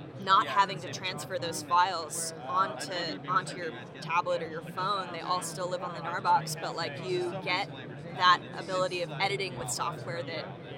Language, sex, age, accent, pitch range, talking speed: English, female, 20-39, American, 165-190 Hz, 175 wpm